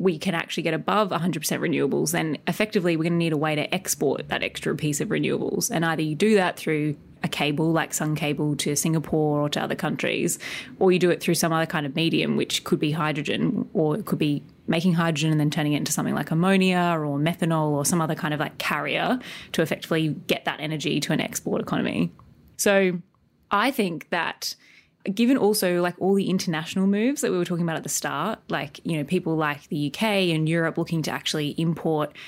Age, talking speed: 20-39, 220 wpm